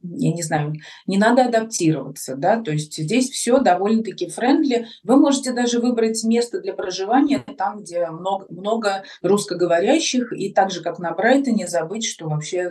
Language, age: Russian, 30-49